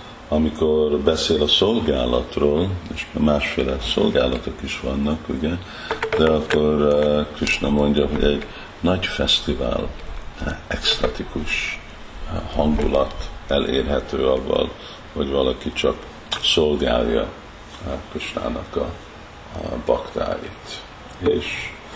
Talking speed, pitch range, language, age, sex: 80 wpm, 70-75 Hz, Hungarian, 50-69, male